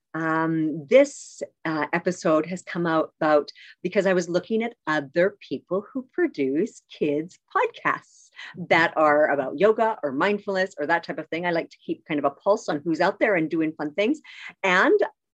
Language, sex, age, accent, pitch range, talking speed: English, female, 50-69, American, 160-235 Hz, 185 wpm